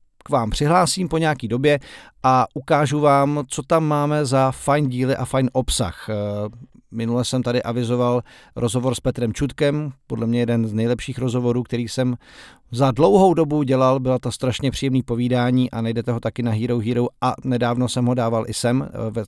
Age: 40-59